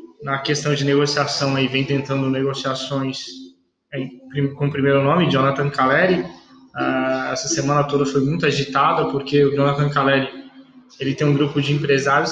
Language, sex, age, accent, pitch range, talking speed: Portuguese, male, 20-39, Brazilian, 140-180 Hz, 145 wpm